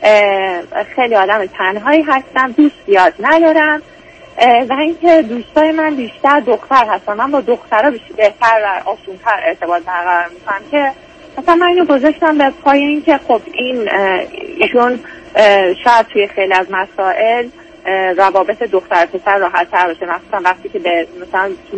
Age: 30-49